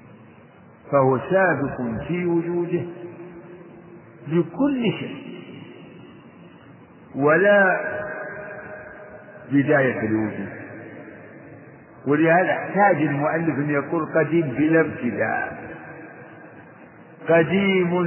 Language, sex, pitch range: Arabic, male, 135-175 Hz